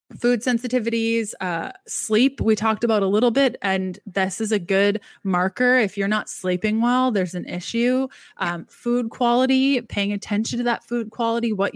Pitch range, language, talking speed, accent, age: 195-240 Hz, English, 175 wpm, American, 20-39